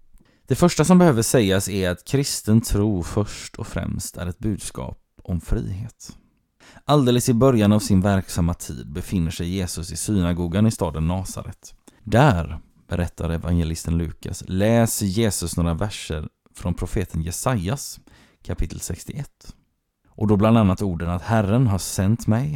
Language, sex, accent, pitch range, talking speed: Swedish, male, native, 90-110 Hz, 145 wpm